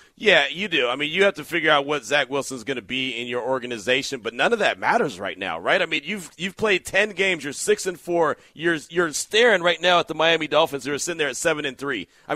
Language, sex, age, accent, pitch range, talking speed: English, male, 40-59, American, 145-200 Hz, 270 wpm